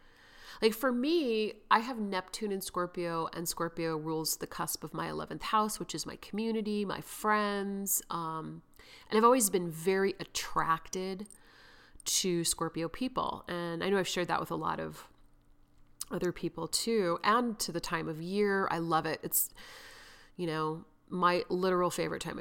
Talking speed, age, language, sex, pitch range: 165 wpm, 30-49, English, female, 165-210 Hz